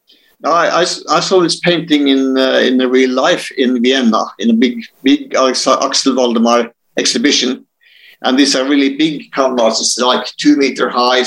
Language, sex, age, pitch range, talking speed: English, male, 60-79, 115-145 Hz, 160 wpm